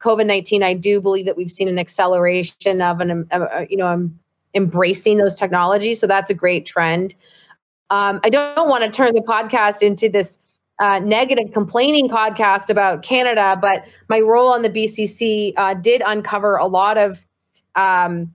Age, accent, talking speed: 30-49, American, 175 wpm